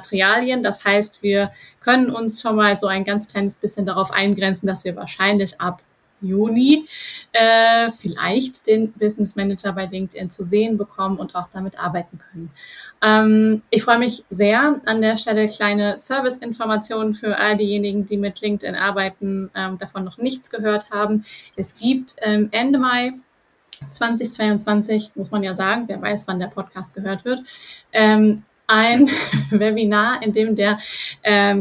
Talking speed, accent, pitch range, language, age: 155 wpm, German, 200-225 Hz, German, 20-39